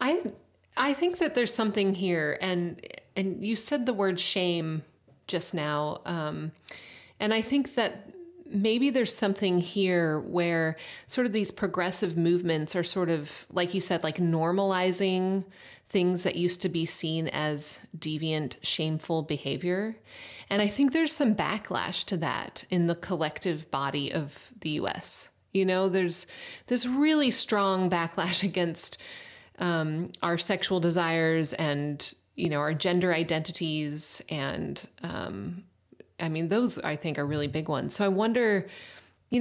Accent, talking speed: American, 150 wpm